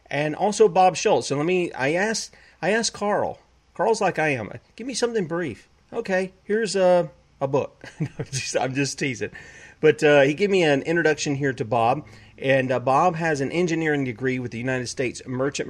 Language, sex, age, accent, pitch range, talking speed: English, male, 40-59, American, 120-145 Hz, 190 wpm